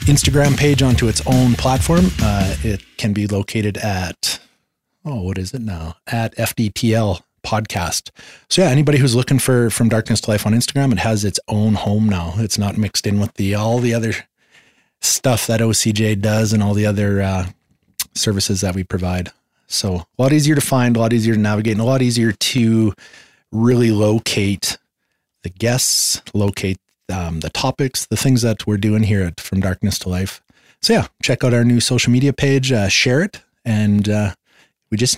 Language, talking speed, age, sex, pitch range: English, 190 wpm, 30-49, male, 95-120 Hz